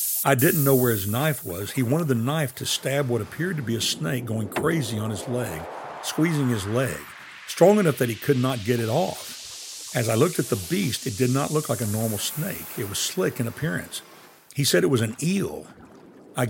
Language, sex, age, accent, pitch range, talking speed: English, male, 60-79, American, 110-145 Hz, 225 wpm